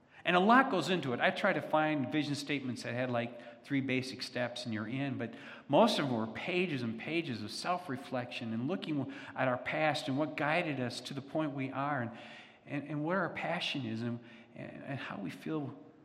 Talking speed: 215 wpm